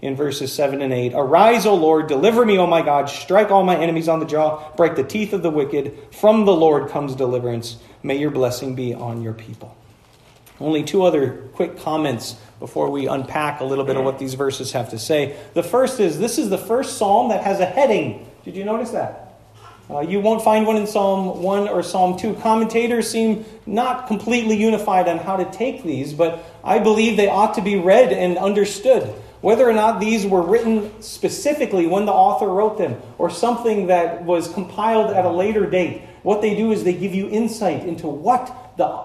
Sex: male